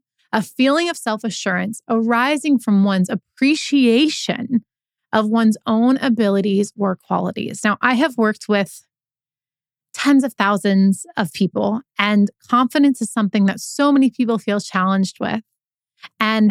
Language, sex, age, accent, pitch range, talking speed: English, female, 30-49, American, 195-240 Hz, 130 wpm